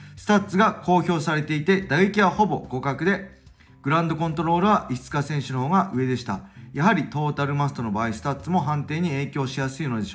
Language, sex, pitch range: Japanese, male, 110-155 Hz